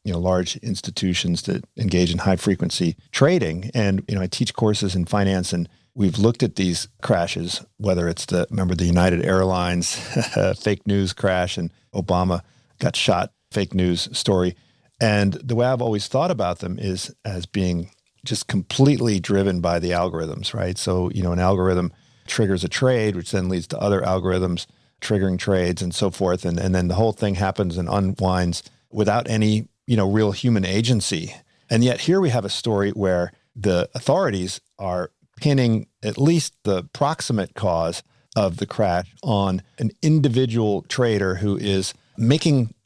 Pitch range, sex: 90-120 Hz, male